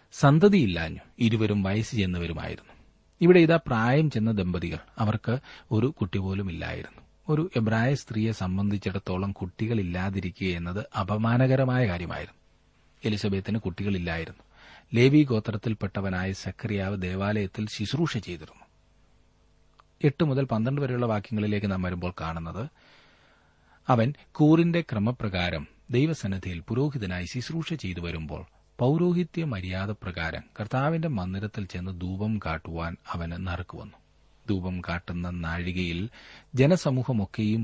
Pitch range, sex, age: 90-115 Hz, male, 30-49